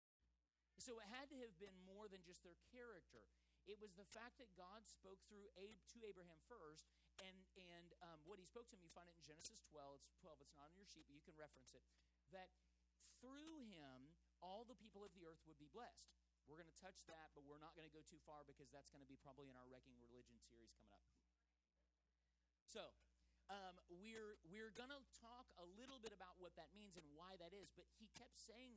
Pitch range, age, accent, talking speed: 130-195 Hz, 40-59, American, 225 wpm